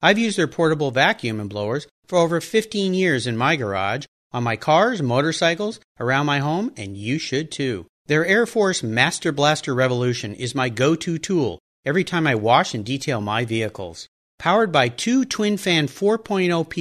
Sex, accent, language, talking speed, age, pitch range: male, American, English, 170 wpm, 40-59, 130-185 Hz